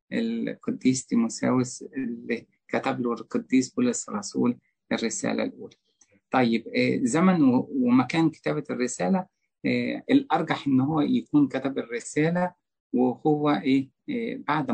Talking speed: 90 wpm